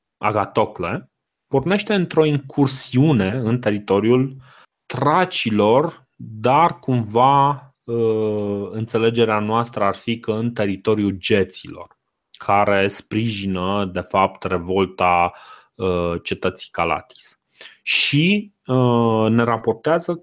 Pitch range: 100-135 Hz